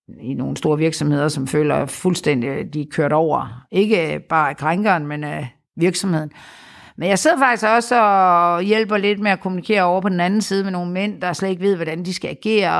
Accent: native